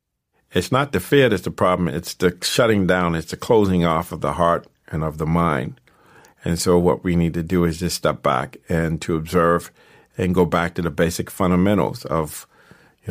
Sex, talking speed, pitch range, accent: male, 205 wpm, 85-100 Hz, American